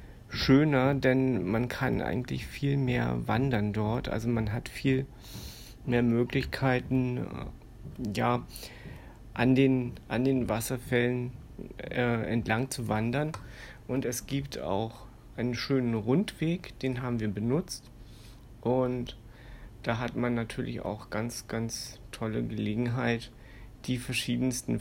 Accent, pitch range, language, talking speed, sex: German, 115-130 Hz, German, 115 wpm, male